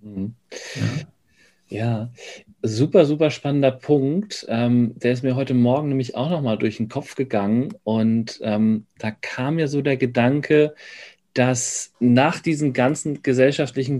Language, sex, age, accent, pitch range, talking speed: German, male, 40-59, German, 115-140 Hz, 125 wpm